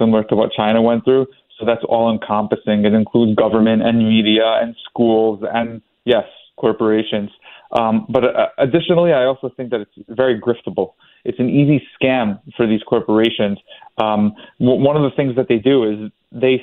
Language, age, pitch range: English, 30-49, 115-145 Hz